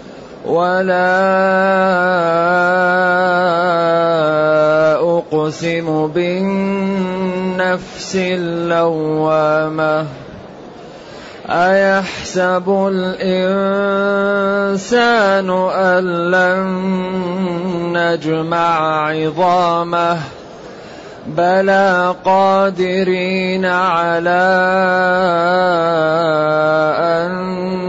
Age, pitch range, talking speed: 30-49, 175-195 Hz, 30 wpm